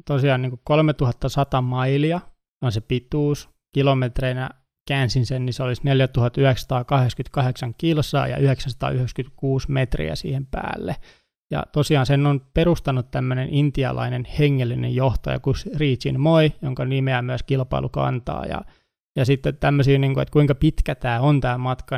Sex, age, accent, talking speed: male, 20-39, native, 125 wpm